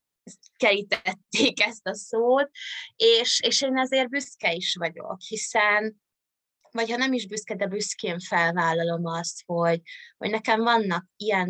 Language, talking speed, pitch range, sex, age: Hungarian, 135 wpm, 180-225 Hz, female, 20-39